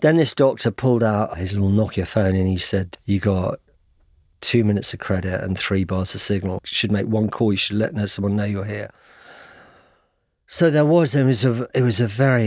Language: English